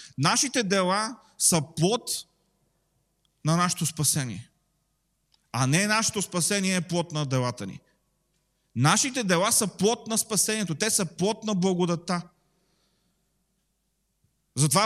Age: 30-49